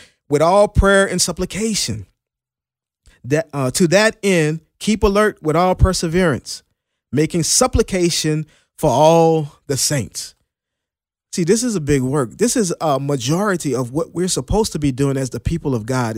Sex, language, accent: male, English, American